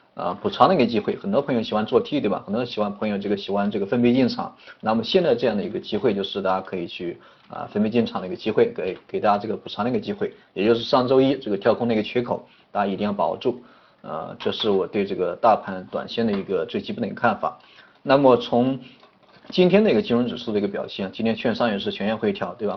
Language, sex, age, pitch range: Chinese, male, 30-49, 100-125 Hz